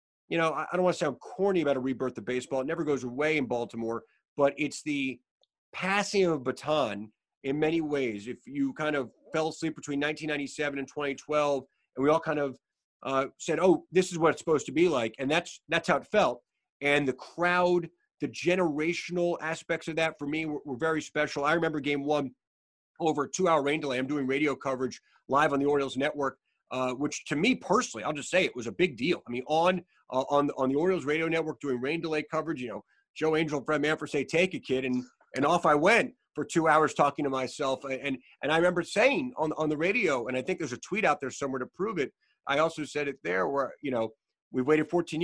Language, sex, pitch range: English, male, 135-165 Hz